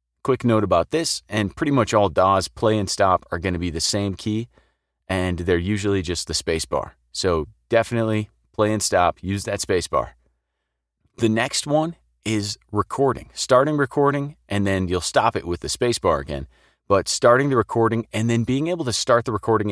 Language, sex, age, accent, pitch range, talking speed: English, male, 30-49, American, 90-120 Hz, 195 wpm